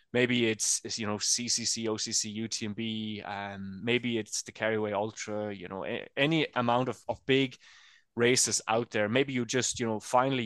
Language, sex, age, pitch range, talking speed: English, male, 20-39, 110-130 Hz, 170 wpm